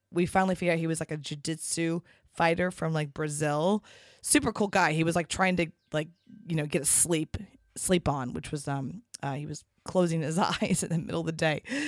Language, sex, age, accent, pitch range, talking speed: English, female, 20-39, American, 160-200 Hz, 220 wpm